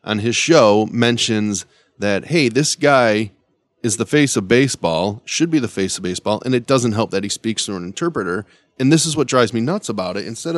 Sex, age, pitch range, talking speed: male, 20-39, 100-135 Hz, 220 wpm